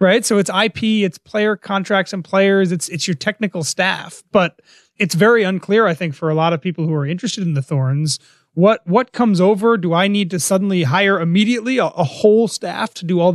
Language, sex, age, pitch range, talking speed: English, male, 30-49, 160-205 Hz, 220 wpm